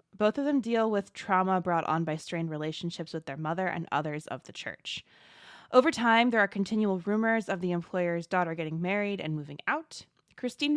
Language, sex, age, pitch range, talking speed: English, female, 20-39, 165-215 Hz, 195 wpm